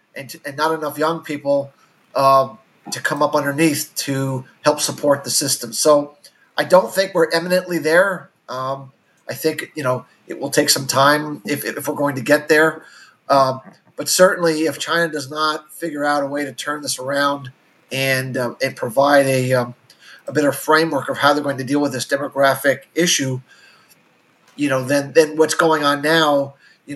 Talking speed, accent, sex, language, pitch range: 185 wpm, American, male, English, 135-155 Hz